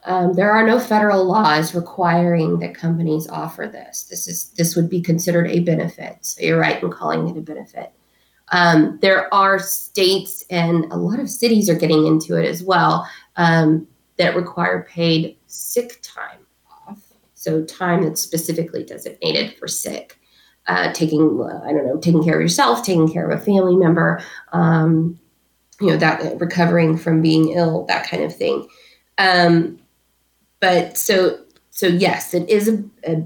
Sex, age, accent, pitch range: female, 20-39, American, 160-190 Hz